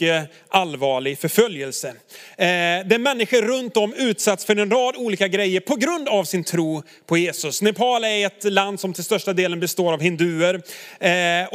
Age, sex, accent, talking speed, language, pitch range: 30-49, male, native, 165 wpm, Swedish, 160-205 Hz